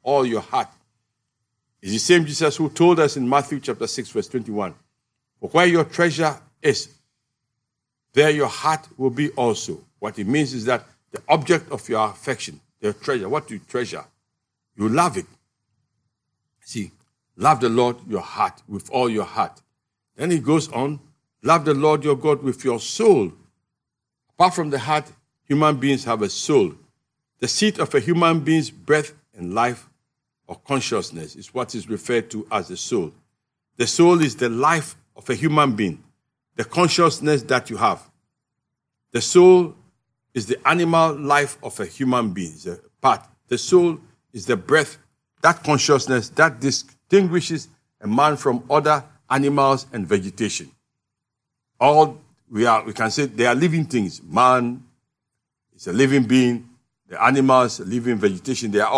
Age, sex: 60-79, male